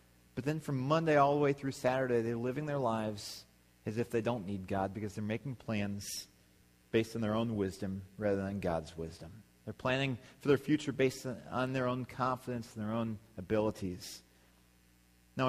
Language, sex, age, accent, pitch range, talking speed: English, male, 40-59, American, 110-150 Hz, 180 wpm